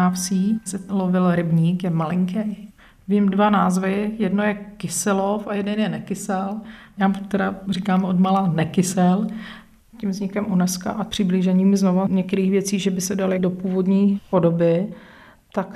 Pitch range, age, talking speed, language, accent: 185-205 Hz, 40-59, 140 wpm, Czech, native